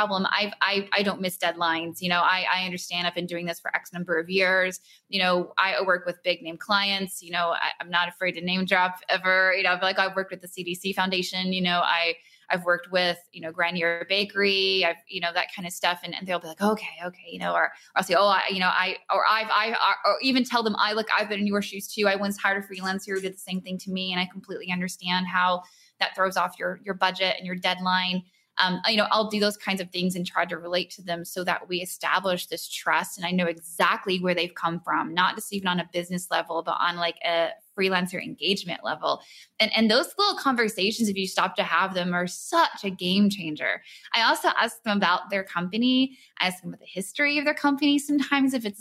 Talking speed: 245 wpm